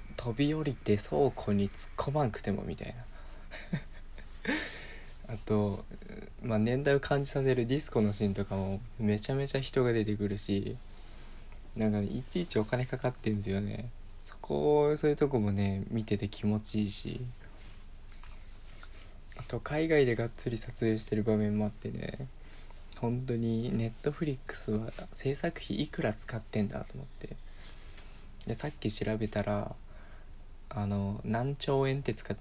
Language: Japanese